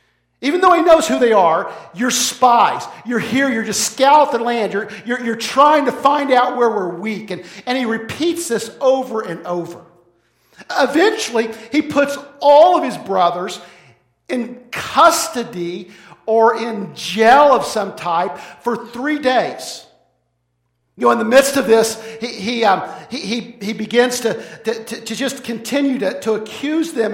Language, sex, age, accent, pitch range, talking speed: English, male, 50-69, American, 175-260 Hz, 165 wpm